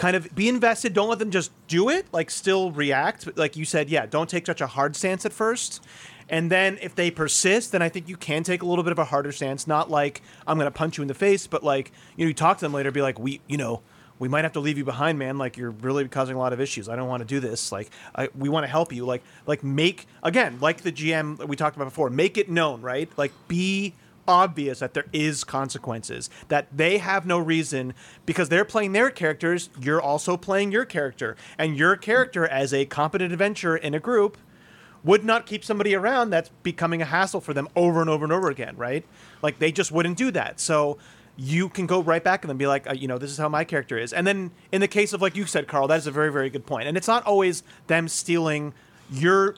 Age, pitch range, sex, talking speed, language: 30-49, 140-185 Hz, male, 250 wpm, English